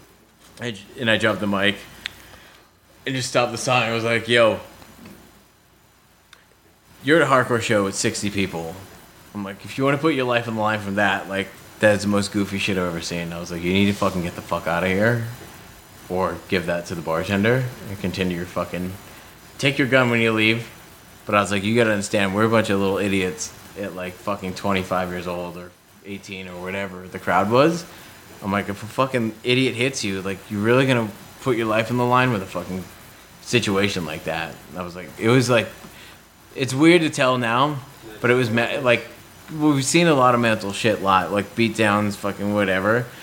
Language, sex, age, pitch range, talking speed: English, male, 30-49, 95-120 Hz, 215 wpm